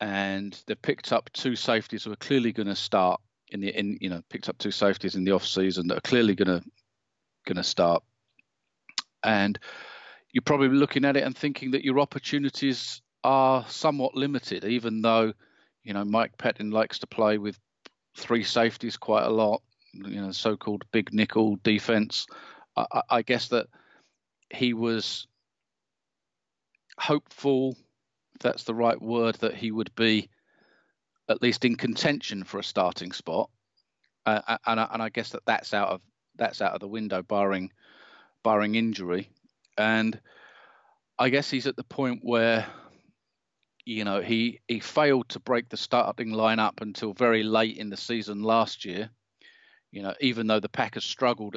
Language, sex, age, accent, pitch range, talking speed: English, male, 40-59, British, 105-120 Hz, 165 wpm